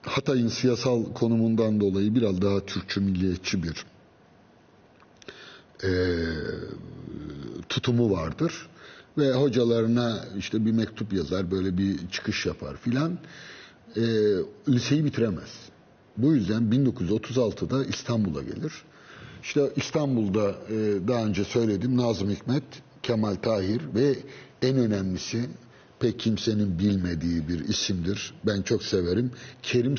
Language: Turkish